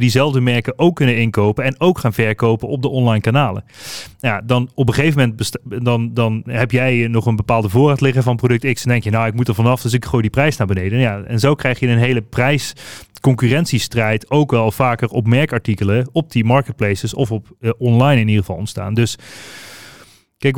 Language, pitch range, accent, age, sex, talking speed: Dutch, 110-130 Hz, Dutch, 30-49, male, 215 wpm